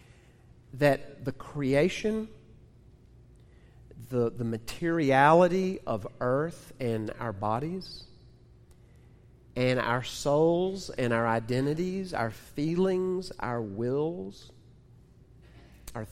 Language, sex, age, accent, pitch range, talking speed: English, male, 40-59, American, 115-150 Hz, 80 wpm